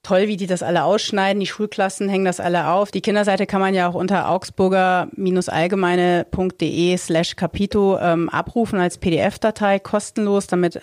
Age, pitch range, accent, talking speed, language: 30-49, 175-195 Hz, German, 140 wpm, German